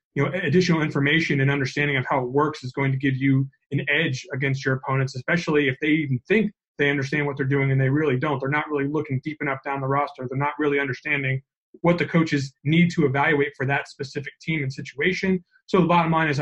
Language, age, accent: English, 30-49, American